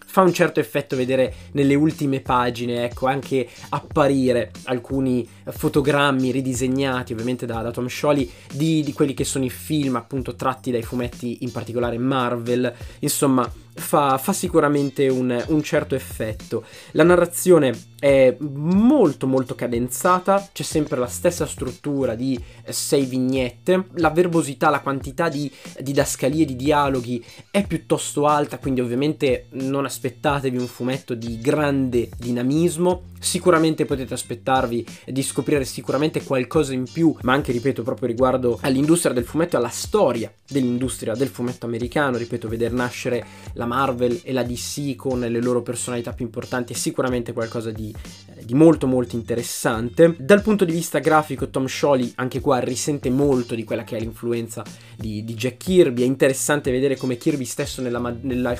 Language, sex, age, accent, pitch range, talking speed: Italian, male, 20-39, native, 120-145 Hz, 155 wpm